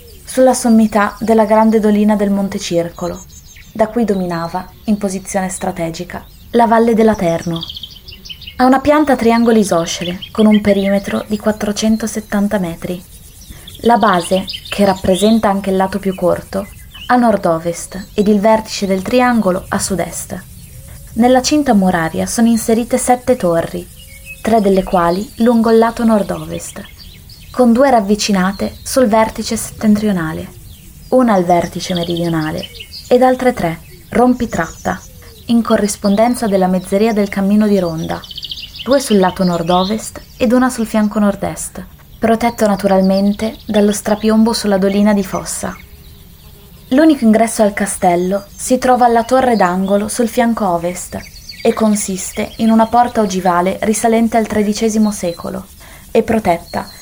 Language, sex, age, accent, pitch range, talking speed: Italian, female, 20-39, native, 185-230 Hz, 130 wpm